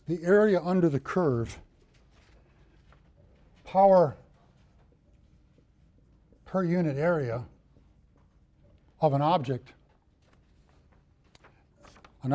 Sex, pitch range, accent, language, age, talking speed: male, 115-155 Hz, American, English, 60-79, 65 wpm